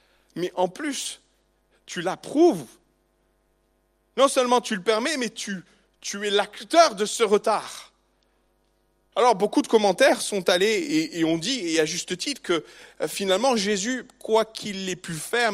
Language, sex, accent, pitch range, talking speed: French, male, French, 180-245 Hz, 155 wpm